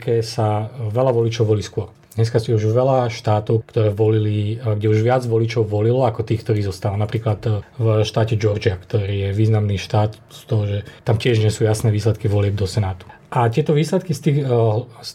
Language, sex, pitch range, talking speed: Slovak, male, 105-120 Hz, 185 wpm